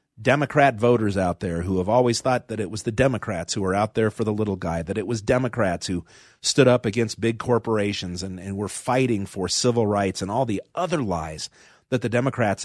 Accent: American